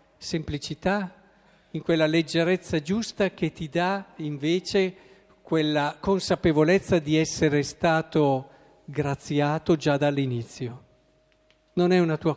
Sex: male